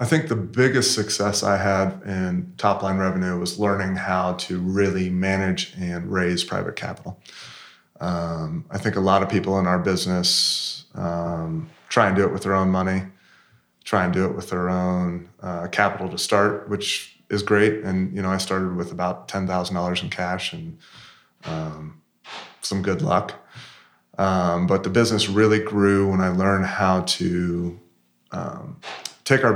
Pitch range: 90-100 Hz